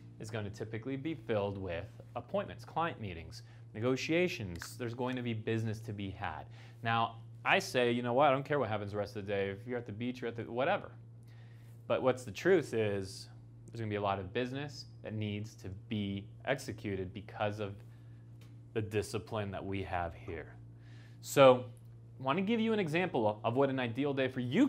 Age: 30-49